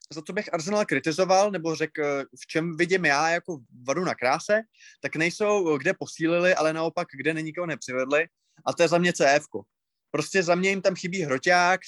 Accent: native